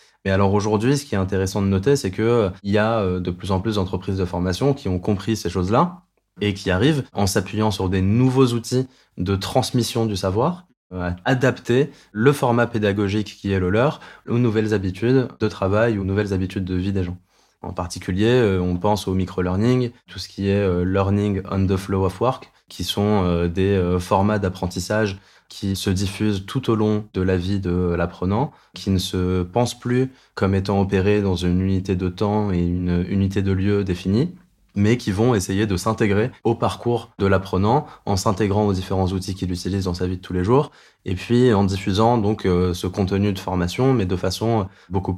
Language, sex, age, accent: French, male, 20-39, French